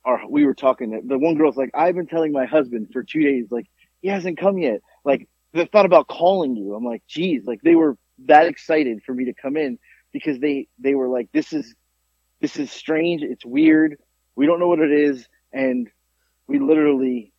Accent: American